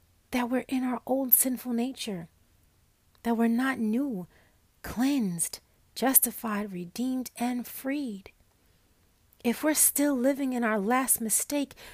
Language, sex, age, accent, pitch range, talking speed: English, female, 40-59, American, 185-255 Hz, 120 wpm